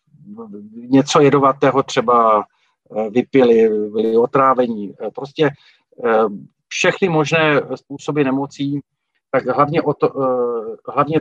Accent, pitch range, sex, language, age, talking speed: native, 130-150 Hz, male, Czech, 40-59, 80 wpm